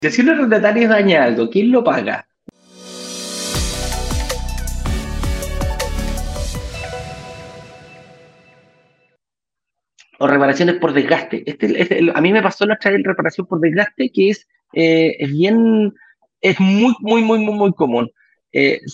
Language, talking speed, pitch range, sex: Spanish, 115 wpm, 165-230 Hz, male